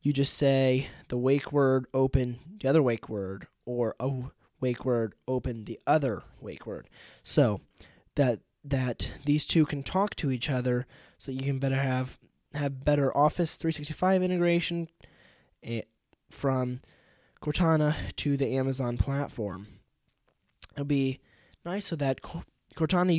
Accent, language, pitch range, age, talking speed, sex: American, English, 115-140 Hz, 20-39, 135 wpm, male